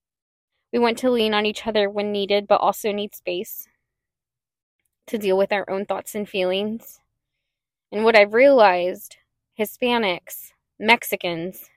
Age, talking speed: 10-29, 140 wpm